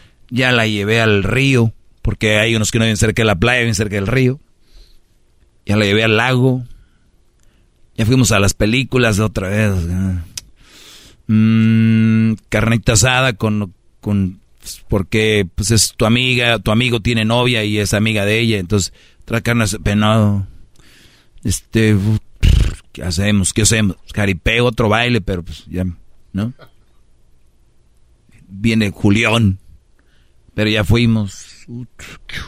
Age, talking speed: 40-59, 135 wpm